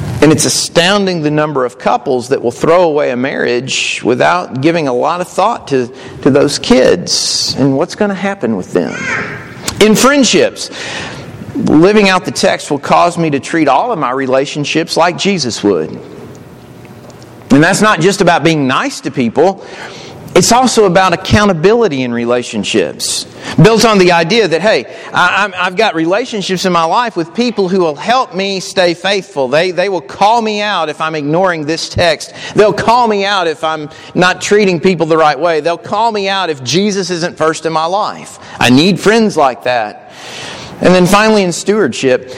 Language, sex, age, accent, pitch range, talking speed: English, male, 40-59, American, 155-205 Hz, 180 wpm